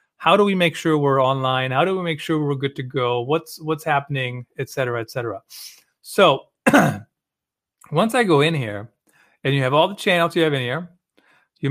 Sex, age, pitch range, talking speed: male, 40-59, 130-170 Hz, 205 wpm